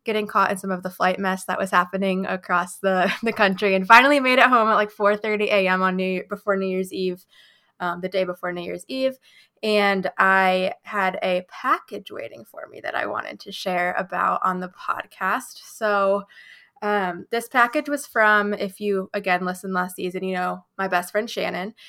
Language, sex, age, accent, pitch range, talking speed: English, female, 20-39, American, 185-220 Hz, 195 wpm